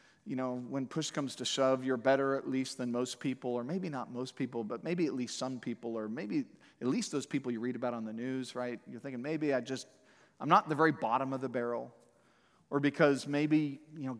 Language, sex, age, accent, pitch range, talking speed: English, male, 40-59, American, 120-160 Hz, 235 wpm